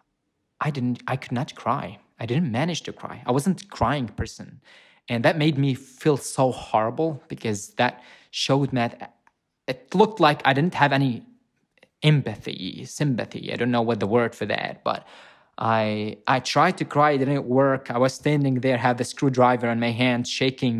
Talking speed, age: 190 wpm, 20-39